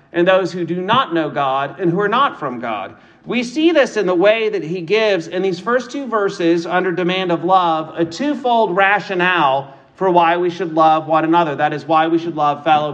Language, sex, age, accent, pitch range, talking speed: English, male, 40-59, American, 165-210 Hz, 225 wpm